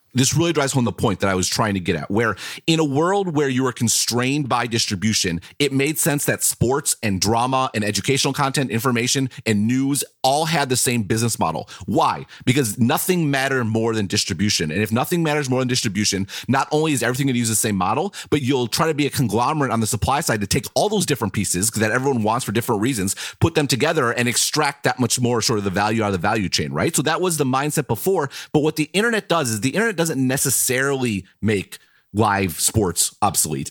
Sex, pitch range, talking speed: male, 105-145 Hz, 230 wpm